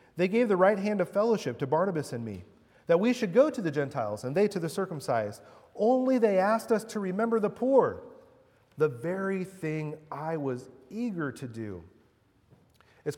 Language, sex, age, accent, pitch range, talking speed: English, male, 40-59, American, 130-180 Hz, 180 wpm